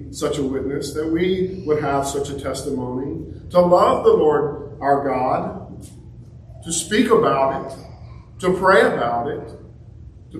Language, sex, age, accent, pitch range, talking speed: English, male, 50-69, American, 135-165 Hz, 145 wpm